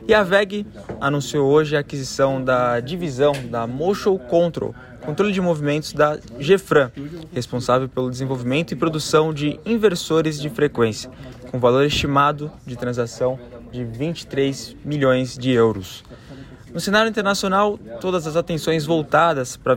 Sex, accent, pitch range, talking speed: male, Brazilian, 130-160 Hz, 135 wpm